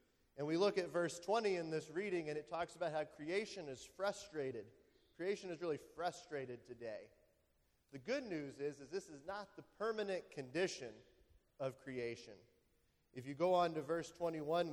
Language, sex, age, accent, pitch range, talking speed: English, male, 30-49, American, 135-175 Hz, 170 wpm